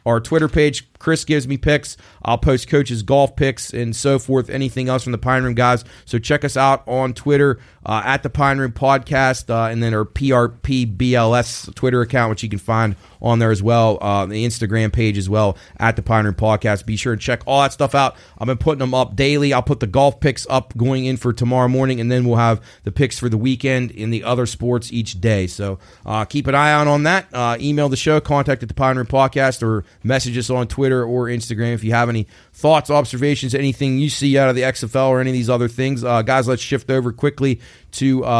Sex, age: male, 30-49